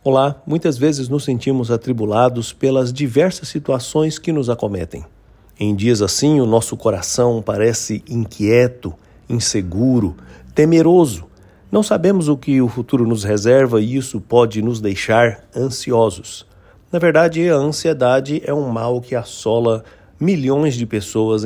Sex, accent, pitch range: male, Brazilian, 110-145 Hz